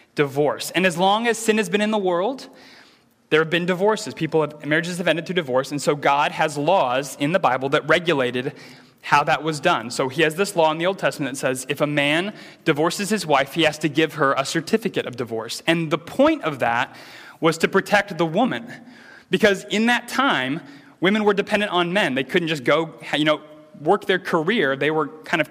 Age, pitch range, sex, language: 20-39, 160-210 Hz, male, English